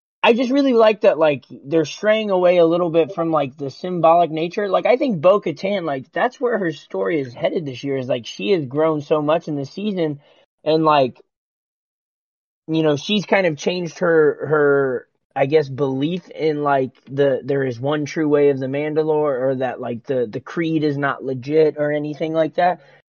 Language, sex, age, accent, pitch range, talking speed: English, male, 20-39, American, 140-175 Hz, 200 wpm